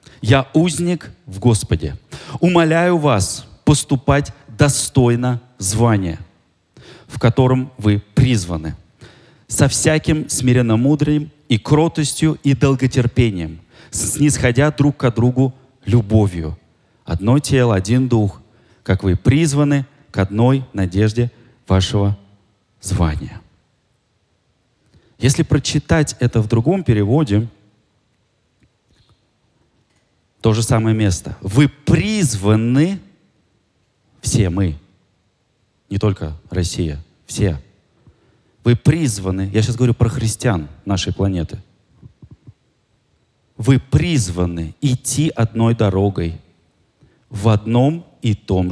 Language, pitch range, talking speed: Russian, 95-135 Hz, 90 wpm